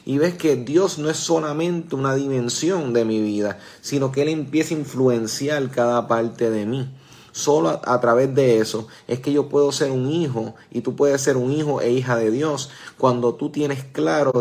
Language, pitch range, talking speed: Spanish, 120-145 Hz, 205 wpm